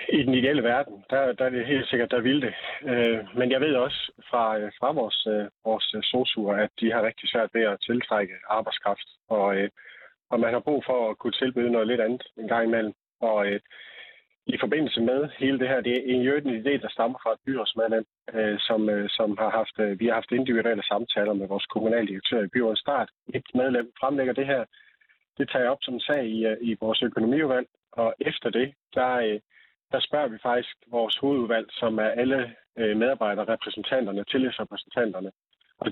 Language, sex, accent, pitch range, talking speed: Danish, male, native, 110-130 Hz, 185 wpm